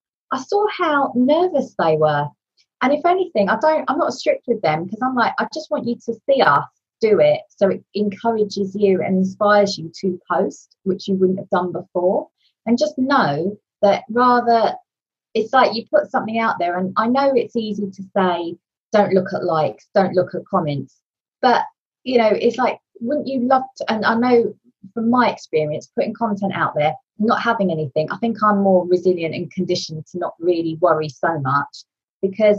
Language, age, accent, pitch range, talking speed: English, 20-39, British, 190-255 Hz, 195 wpm